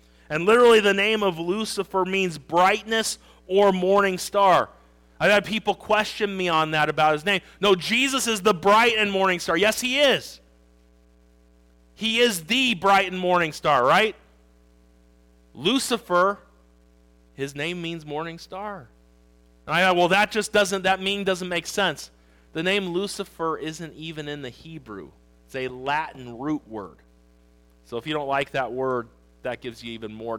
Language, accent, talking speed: English, American, 165 wpm